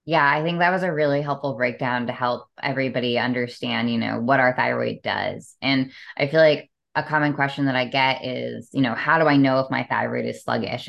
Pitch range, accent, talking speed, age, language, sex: 130-160 Hz, American, 225 wpm, 10-29, English, female